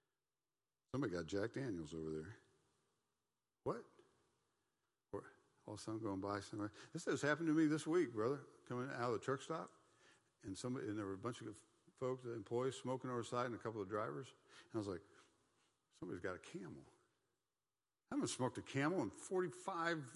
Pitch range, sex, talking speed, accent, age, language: 100-135 Hz, male, 180 wpm, American, 60-79, English